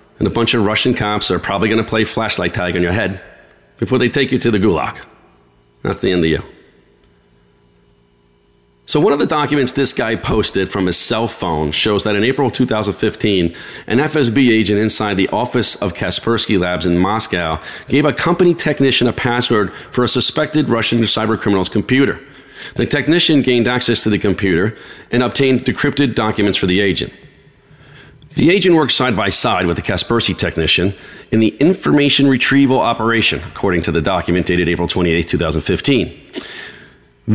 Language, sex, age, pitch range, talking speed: English, male, 40-59, 95-125 Hz, 165 wpm